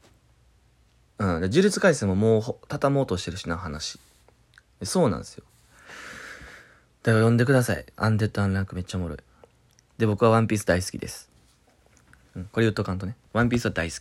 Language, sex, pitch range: Japanese, male, 85-115 Hz